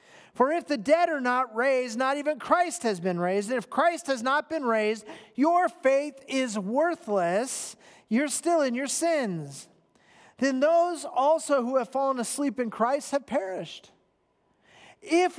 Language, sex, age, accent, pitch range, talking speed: English, male, 40-59, American, 220-300 Hz, 160 wpm